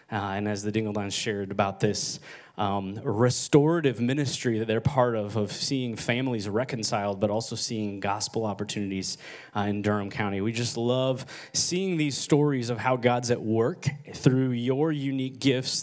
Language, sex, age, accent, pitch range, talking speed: English, male, 20-39, American, 110-140 Hz, 165 wpm